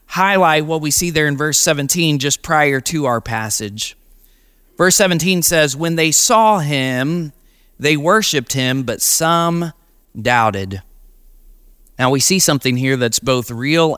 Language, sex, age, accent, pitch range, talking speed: English, male, 30-49, American, 145-190 Hz, 145 wpm